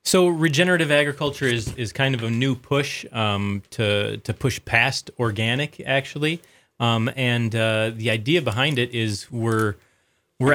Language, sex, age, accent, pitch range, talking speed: English, male, 30-49, American, 100-125 Hz, 155 wpm